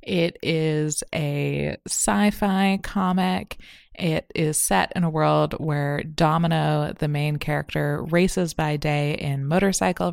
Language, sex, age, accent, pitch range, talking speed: English, female, 20-39, American, 145-185 Hz, 125 wpm